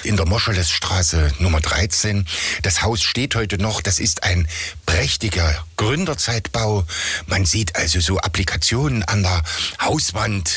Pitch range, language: 80-95 Hz, German